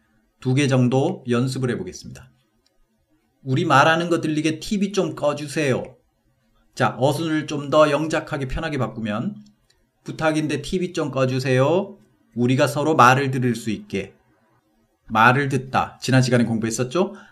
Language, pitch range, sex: Korean, 120-180 Hz, male